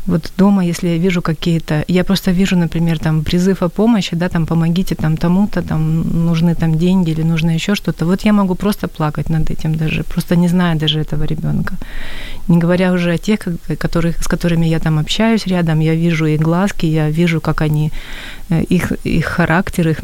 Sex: female